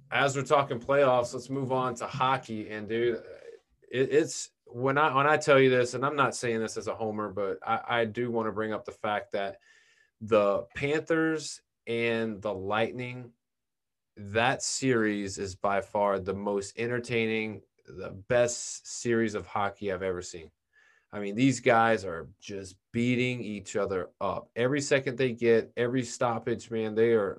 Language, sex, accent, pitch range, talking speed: English, male, American, 110-130 Hz, 175 wpm